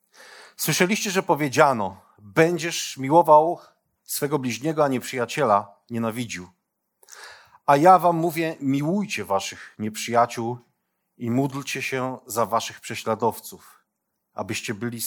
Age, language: 40-59, Polish